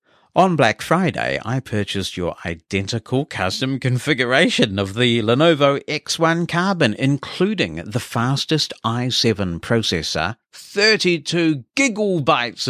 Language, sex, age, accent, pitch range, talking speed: English, male, 60-79, British, 90-125 Hz, 100 wpm